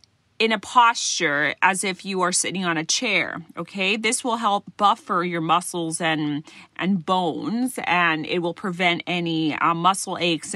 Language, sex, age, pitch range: Thai, female, 30-49, 165-205 Hz